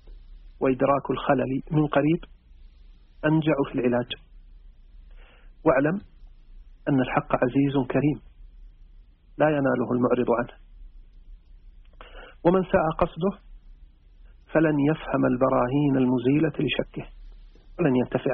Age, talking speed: 50-69, 85 wpm